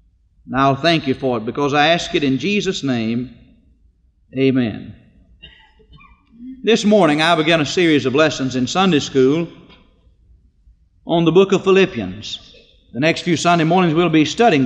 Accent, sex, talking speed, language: American, male, 155 wpm, English